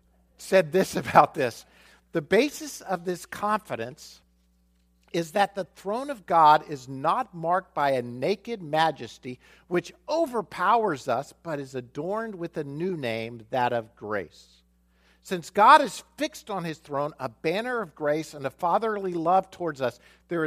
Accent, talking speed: American, 155 wpm